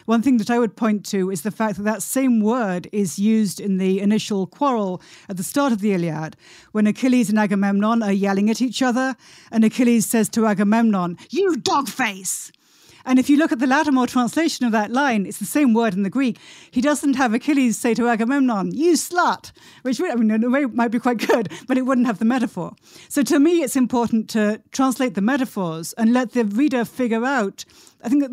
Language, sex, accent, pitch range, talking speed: English, female, British, 195-245 Hz, 220 wpm